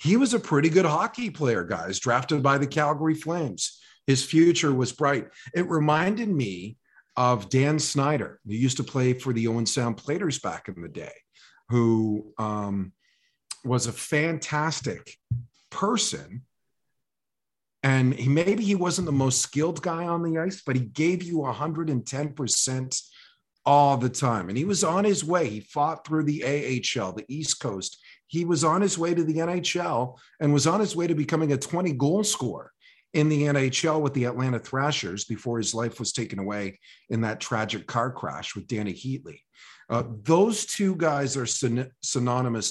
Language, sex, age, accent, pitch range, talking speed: English, male, 40-59, American, 120-160 Hz, 170 wpm